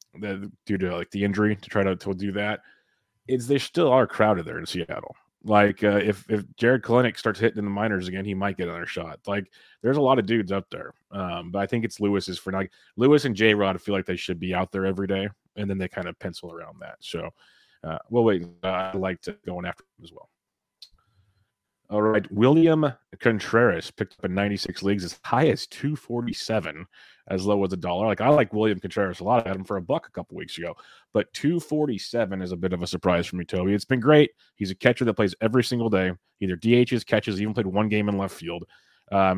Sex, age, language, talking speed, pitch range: male, 30-49, English, 240 wpm, 95-110 Hz